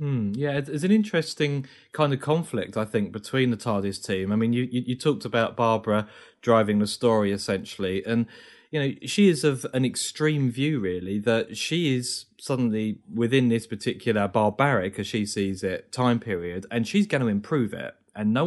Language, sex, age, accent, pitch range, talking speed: English, male, 30-49, British, 105-140 Hz, 190 wpm